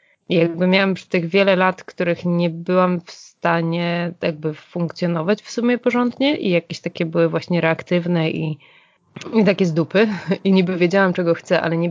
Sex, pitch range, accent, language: female, 165-185 Hz, native, Polish